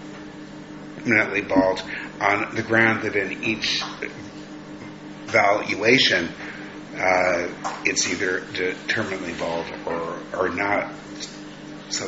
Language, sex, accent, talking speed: English, male, American, 85 wpm